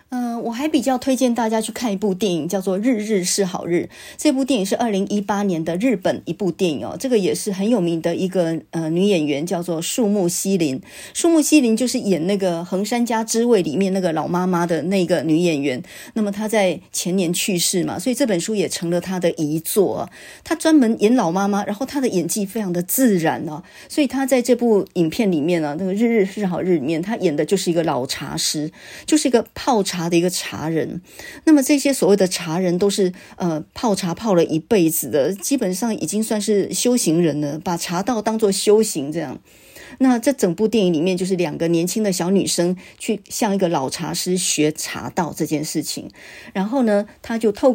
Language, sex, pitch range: Chinese, female, 170-225 Hz